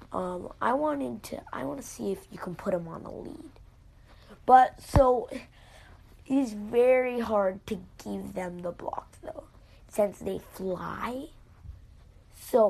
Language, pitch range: English, 185-265 Hz